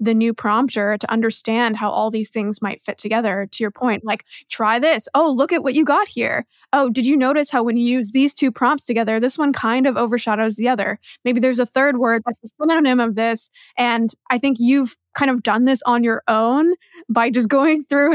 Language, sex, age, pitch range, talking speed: English, female, 20-39, 225-265 Hz, 230 wpm